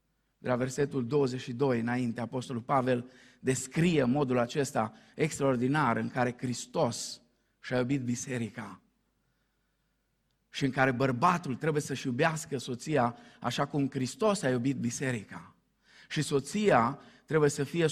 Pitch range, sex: 130-170 Hz, male